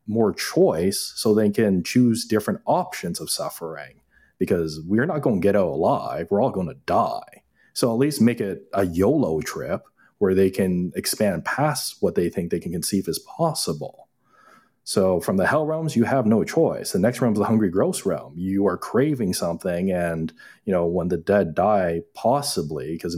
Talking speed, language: 190 wpm, English